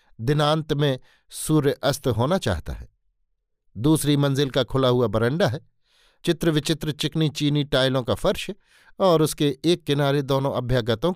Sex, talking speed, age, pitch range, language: male, 145 wpm, 50-69, 125-155 Hz, Hindi